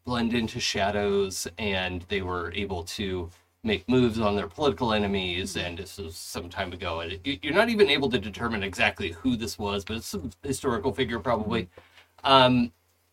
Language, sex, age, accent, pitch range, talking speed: English, male, 30-49, American, 90-125 Hz, 175 wpm